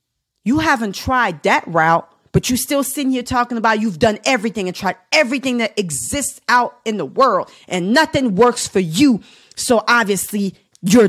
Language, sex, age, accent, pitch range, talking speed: English, female, 40-59, American, 170-240 Hz, 175 wpm